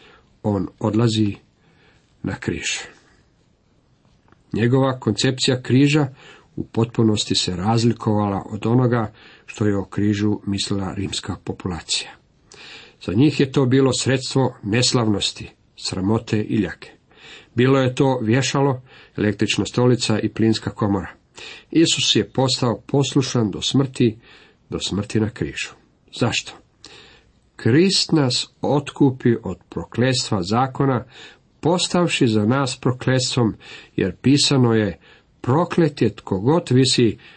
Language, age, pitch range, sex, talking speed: Croatian, 50-69, 105-135 Hz, male, 110 wpm